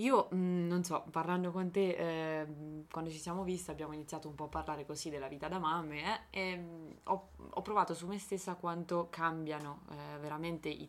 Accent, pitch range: native, 150-180 Hz